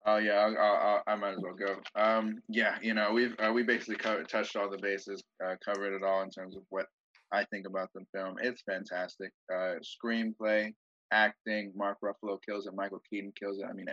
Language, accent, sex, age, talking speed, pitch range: English, American, male, 20-39, 215 wpm, 100-110 Hz